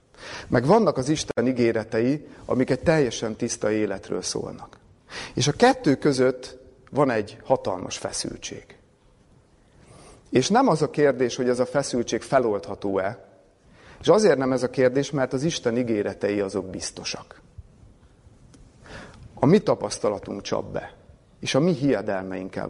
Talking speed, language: 130 wpm, Hungarian